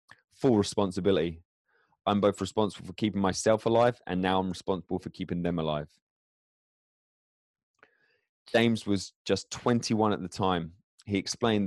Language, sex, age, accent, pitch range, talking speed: English, male, 20-39, British, 90-110 Hz, 135 wpm